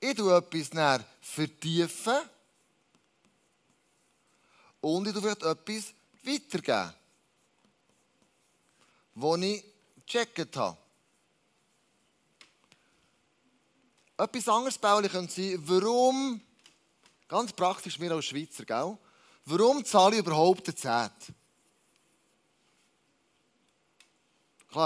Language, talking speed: German, 80 wpm